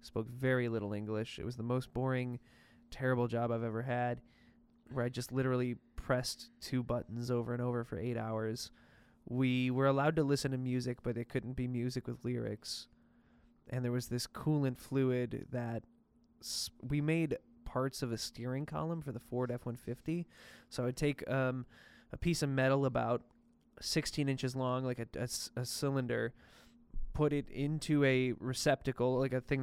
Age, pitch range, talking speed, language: 20-39, 120-130 Hz, 170 wpm, English